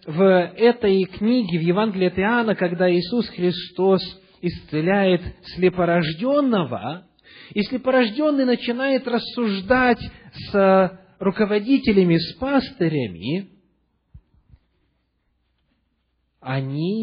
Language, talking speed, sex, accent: Russian, 70 wpm, male, native